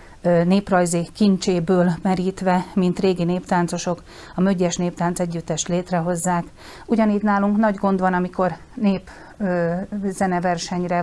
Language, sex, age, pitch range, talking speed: Hungarian, female, 40-59, 180-210 Hz, 100 wpm